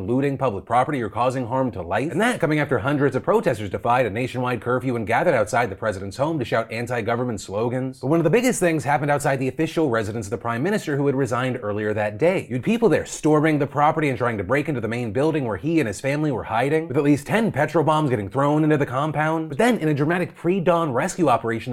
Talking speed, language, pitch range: 250 wpm, English, 120-155 Hz